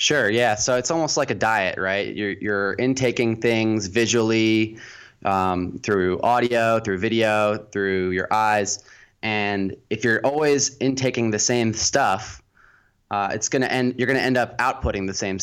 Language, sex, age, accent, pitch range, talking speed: English, male, 20-39, American, 100-115 Hz, 165 wpm